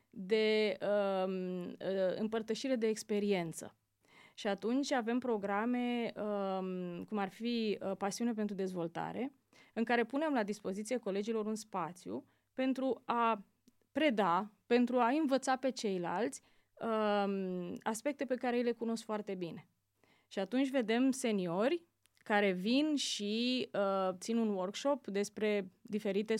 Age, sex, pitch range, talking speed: 20-39, female, 200-245 Hz, 110 wpm